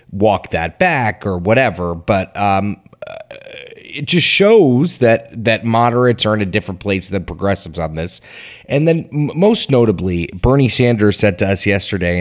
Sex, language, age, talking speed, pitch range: male, English, 30-49, 155 wpm, 90-115 Hz